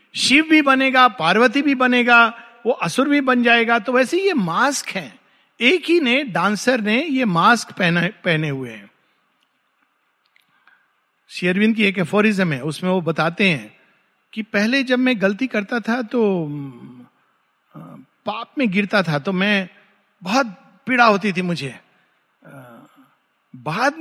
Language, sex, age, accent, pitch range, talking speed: Hindi, male, 50-69, native, 200-280 Hz, 140 wpm